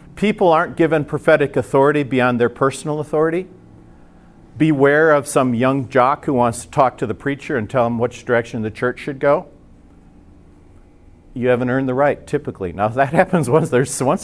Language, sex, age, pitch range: English, male, 50-69, 95-145 Hz